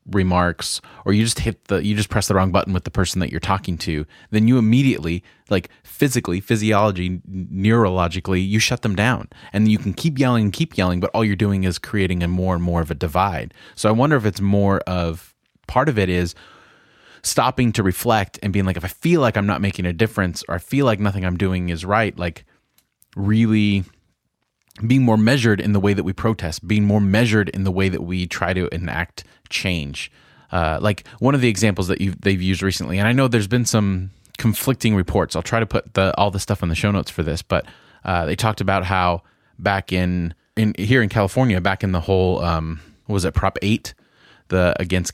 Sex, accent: male, American